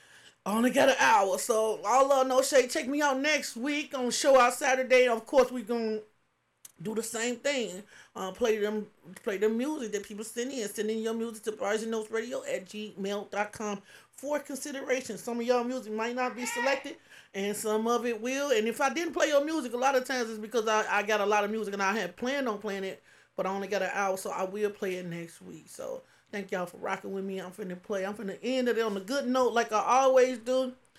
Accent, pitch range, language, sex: American, 195-245 Hz, English, male